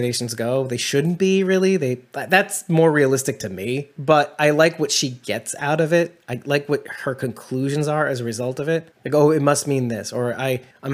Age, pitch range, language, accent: 30-49, 125-165 Hz, English, American